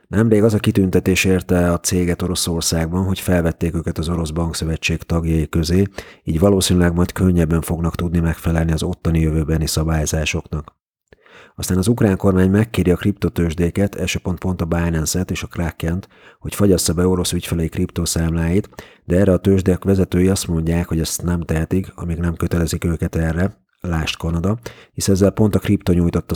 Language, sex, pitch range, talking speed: Hungarian, male, 85-100 Hz, 160 wpm